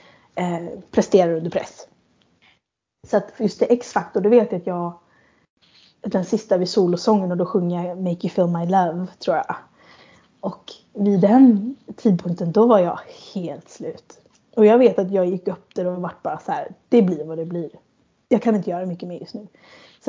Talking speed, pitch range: 195 wpm, 180-220 Hz